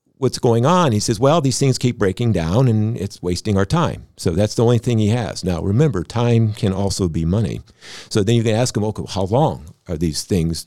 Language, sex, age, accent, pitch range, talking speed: English, male, 50-69, American, 90-115 Hz, 240 wpm